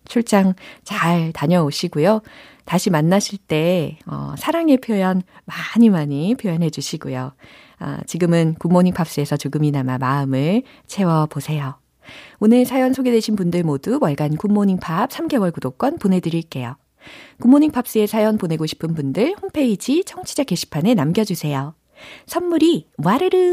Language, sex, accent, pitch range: Korean, female, native, 155-245 Hz